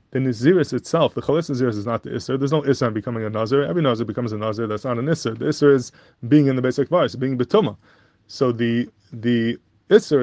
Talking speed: 235 wpm